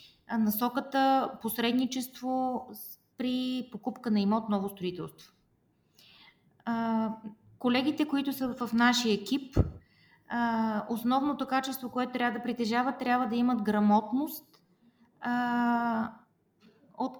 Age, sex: 20-39, female